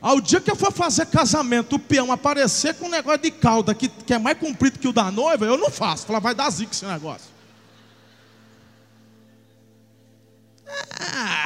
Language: Portuguese